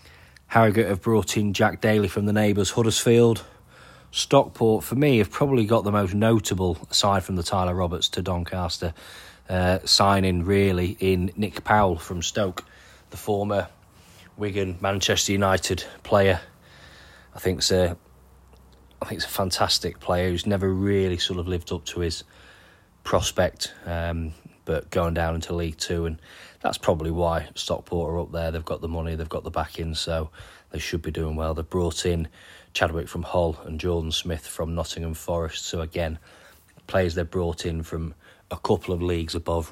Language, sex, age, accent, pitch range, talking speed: English, male, 30-49, British, 85-95 Hz, 170 wpm